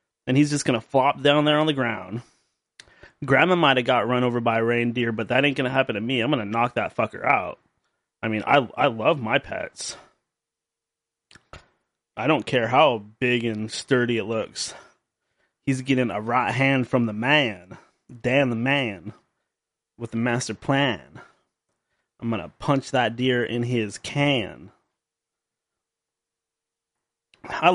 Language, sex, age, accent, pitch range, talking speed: English, male, 20-39, American, 115-145 Hz, 165 wpm